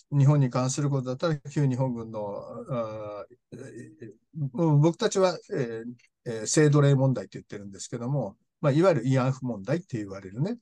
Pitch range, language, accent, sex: 125-180 Hz, Japanese, native, male